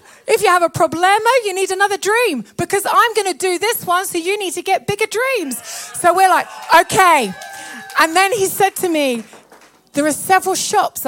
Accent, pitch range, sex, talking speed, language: British, 250-310 Hz, female, 200 wpm, German